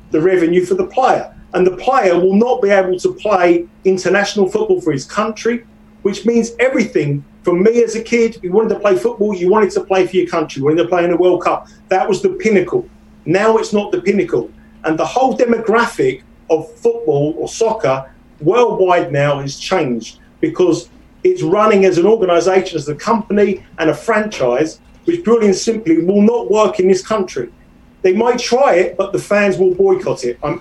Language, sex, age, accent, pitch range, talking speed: English, male, 40-59, British, 175-225 Hz, 200 wpm